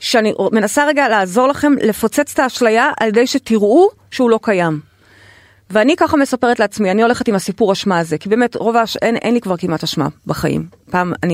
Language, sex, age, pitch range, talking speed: Hebrew, female, 30-49, 180-285 Hz, 195 wpm